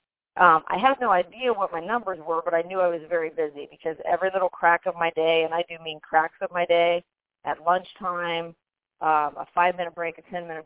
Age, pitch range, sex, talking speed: 40-59, 160-200 Hz, female, 220 wpm